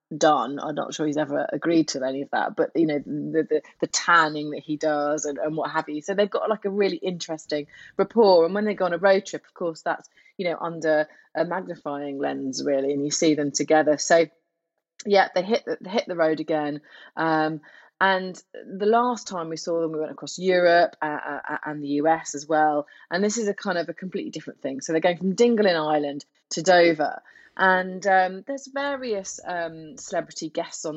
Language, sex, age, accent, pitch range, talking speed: English, female, 30-49, British, 150-175 Hz, 215 wpm